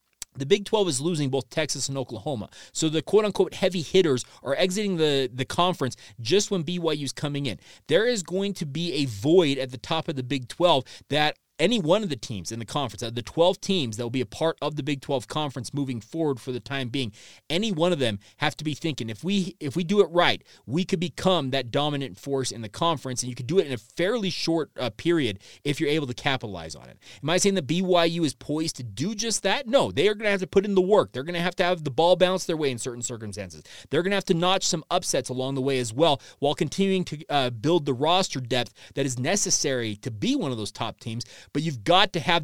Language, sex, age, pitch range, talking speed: English, male, 30-49, 130-175 Hz, 255 wpm